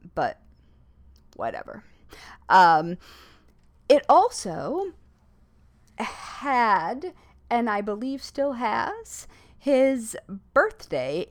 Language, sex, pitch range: English, female, 170-275 Hz